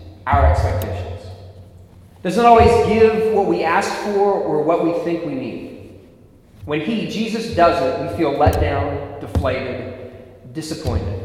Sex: male